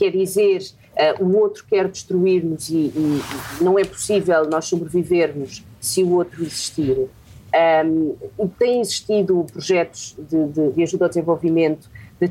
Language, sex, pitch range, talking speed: Portuguese, female, 145-195 Hz, 130 wpm